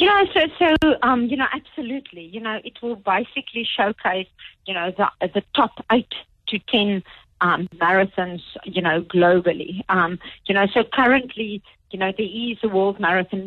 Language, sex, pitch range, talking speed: English, female, 180-210 Hz, 175 wpm